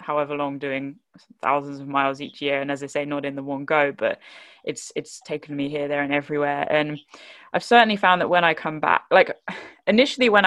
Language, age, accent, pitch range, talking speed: English, 10-29, British, 145-195 Hz, 220 wpm